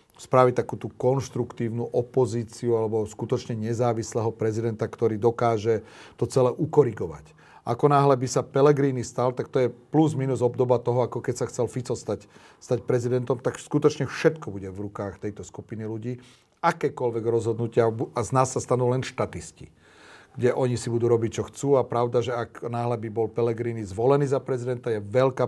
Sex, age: male, 40-59